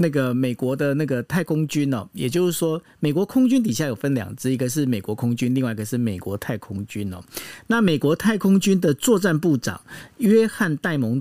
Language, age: Chinese, 50-69